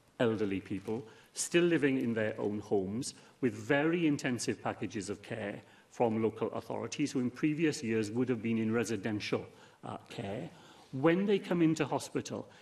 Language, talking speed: English, 155 wpm